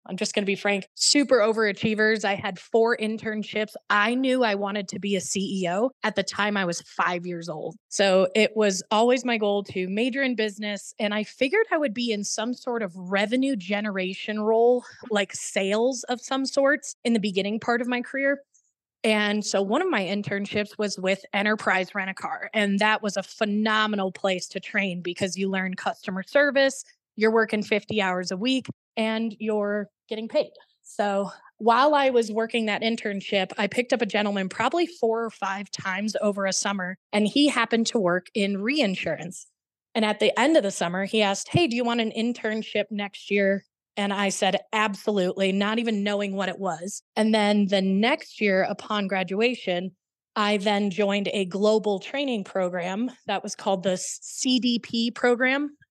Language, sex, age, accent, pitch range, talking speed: English, female, 20-39, American, 195-230 Hz, 180 wpm